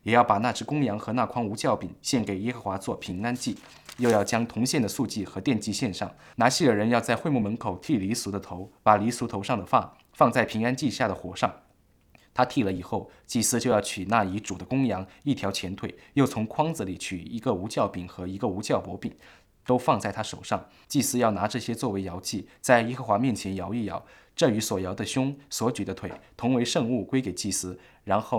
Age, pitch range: 20-39, 95-120 Hz